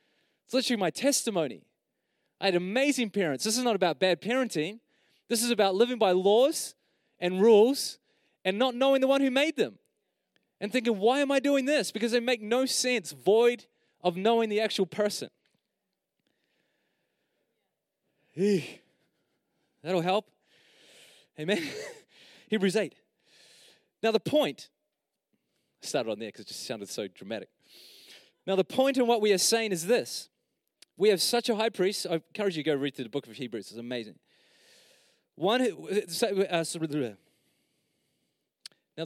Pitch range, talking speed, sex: 145-235 Hz, 150 wpm, male